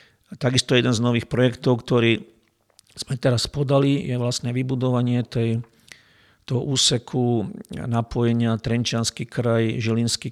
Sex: male